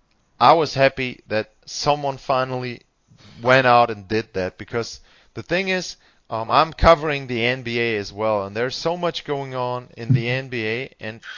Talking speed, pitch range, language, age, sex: 170 wpm, 120-145 Hz, German, 30-49, male